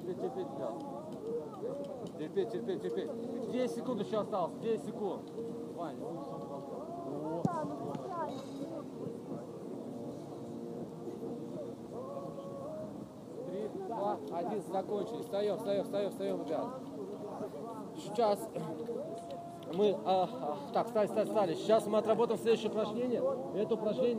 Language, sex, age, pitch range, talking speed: Russian, male, 40-59, 210-235 Hz, 85 wpm